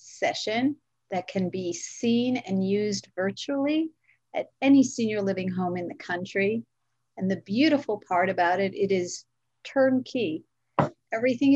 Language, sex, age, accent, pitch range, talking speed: English, female, 50-69, American, 185-230 Hz, 135 wpm